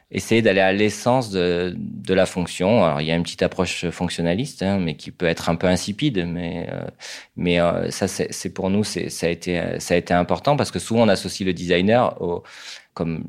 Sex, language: male, French